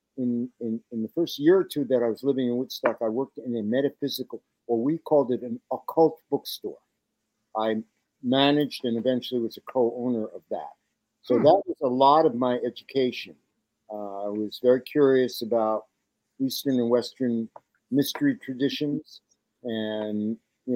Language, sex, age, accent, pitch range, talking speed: English, male, 50-69, American, 115-135 Hz, 160 wpm